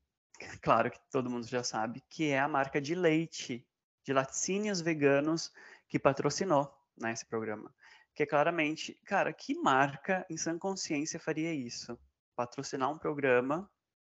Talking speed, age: 145 wpm, 20-39